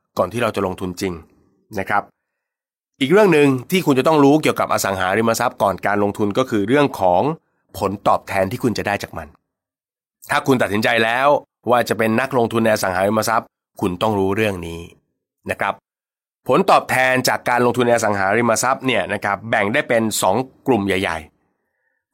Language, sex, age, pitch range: Thai, male, 20-39, 95-120 Hz